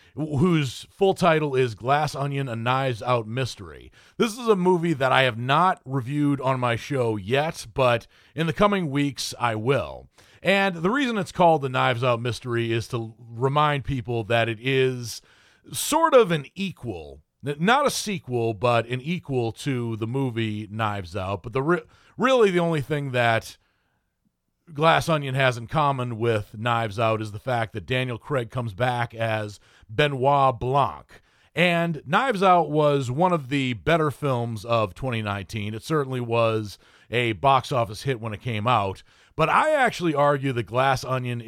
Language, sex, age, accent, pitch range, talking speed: English, male, 40-59, American, 115-150 Hz, 170 wpm